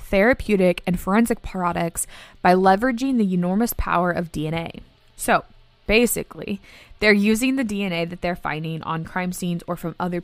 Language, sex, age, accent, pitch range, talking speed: English, female, 20-39, American, 175-220 Hz, 150 wpm